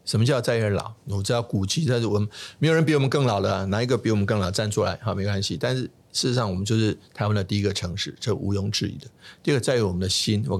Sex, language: male, Chinese